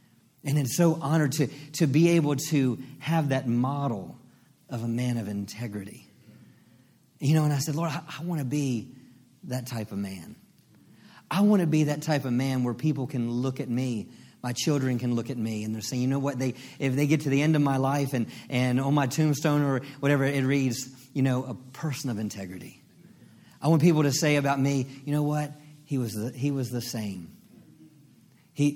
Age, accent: 40-59, American